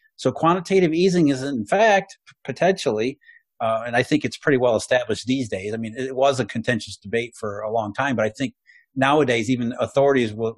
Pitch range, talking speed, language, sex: 115-150 Hz, 200 wpm, English, male